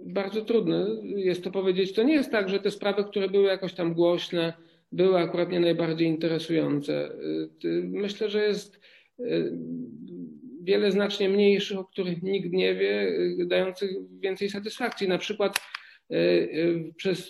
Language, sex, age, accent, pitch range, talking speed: Polish, male, 50-69, native, 165-200 Hz, 135 wpm